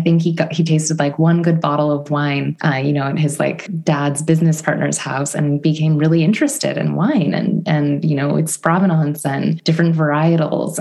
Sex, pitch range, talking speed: female, 145-170 Hz, 205 wpm